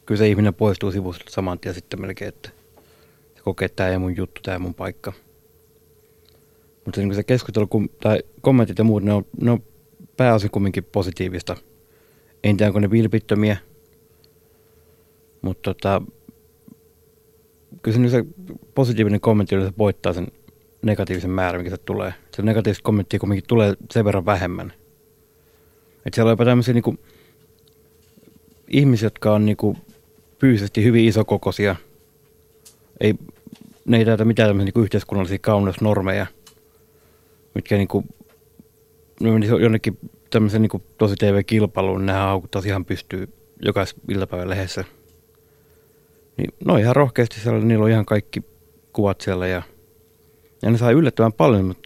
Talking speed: 140 wpm